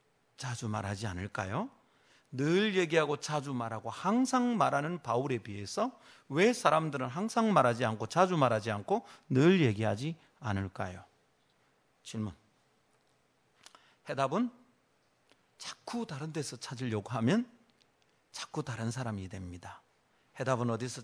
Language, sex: Korean, male